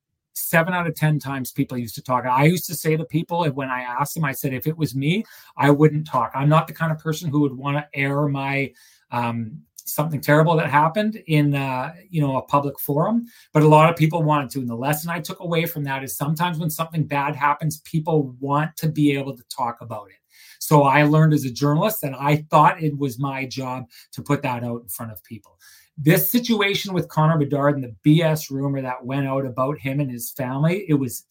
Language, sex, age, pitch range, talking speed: English, male, 30-49, 135-165 Hz, 235 wpm